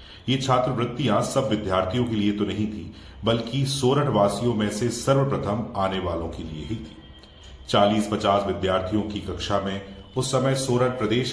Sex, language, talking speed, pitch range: male, Hindi, 165 wpm, 90-120 Hz